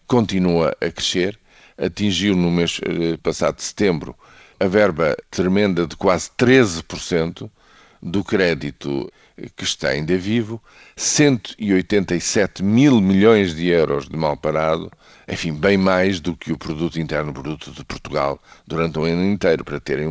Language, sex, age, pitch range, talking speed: Portuguese, male, 50-69, 80-100 Hz, 135 wpm